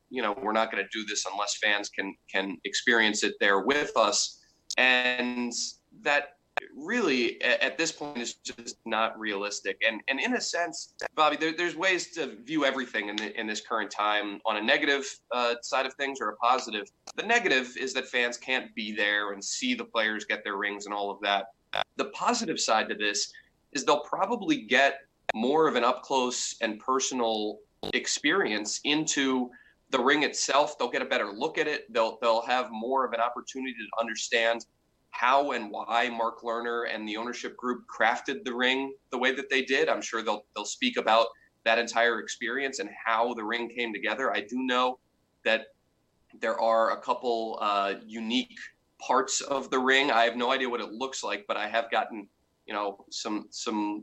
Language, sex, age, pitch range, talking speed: English, male, 30-49, 110-135 Hz, 190 wpm